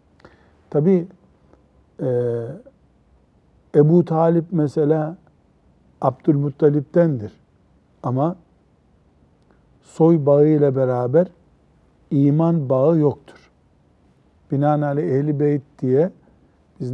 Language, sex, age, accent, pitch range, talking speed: Turkish, male, 60-79, native, 125-165 Hz, 60 wpm